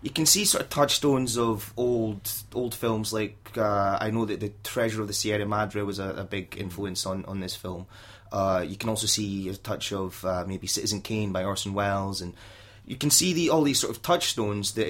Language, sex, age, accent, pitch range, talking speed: English, male, 20-39, British, 100-115 Hz, 225 wpm